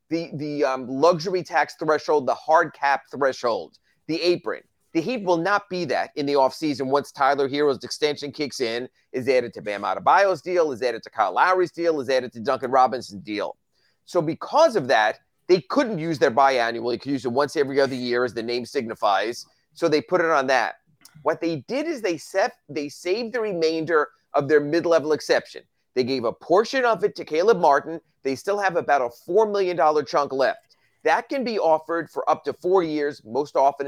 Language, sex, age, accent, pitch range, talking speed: English, male, 30-49, American, 140-195 Hz, 205 wpm